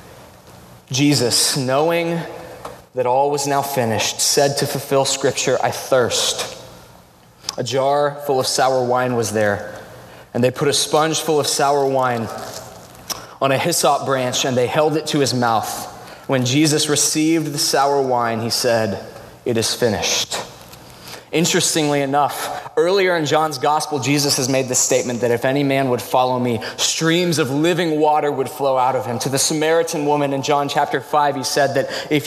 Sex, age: male, 20-39